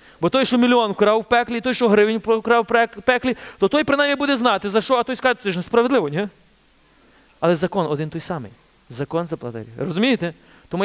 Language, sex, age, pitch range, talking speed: Ukrainian, male, 30-49, 150-235 Hz, 210 wpm